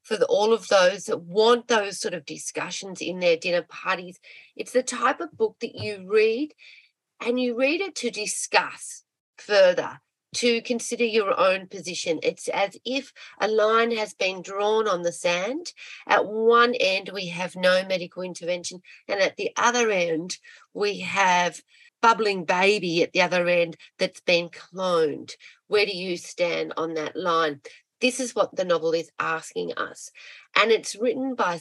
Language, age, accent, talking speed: English, 40-59, Australian, 165 wpm